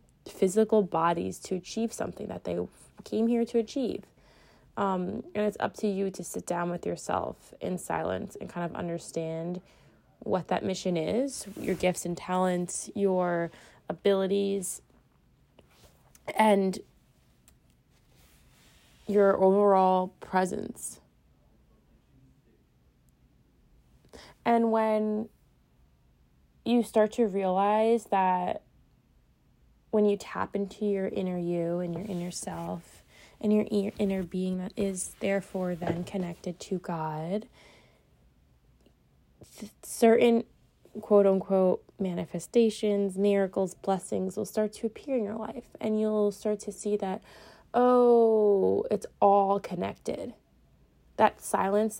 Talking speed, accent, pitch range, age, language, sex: 110 wpm, American, 180-215 Hz, 20-39, English, female